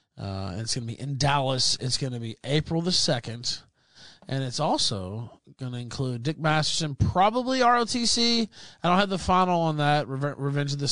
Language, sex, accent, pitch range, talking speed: English, male, American, 115-165 Hz, 190 wpm